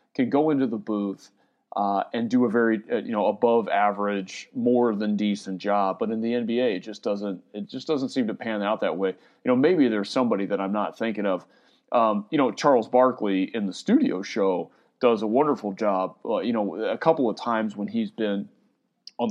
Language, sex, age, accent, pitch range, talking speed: English, male, 30-49, American, 100-115 Hz, 215 wpm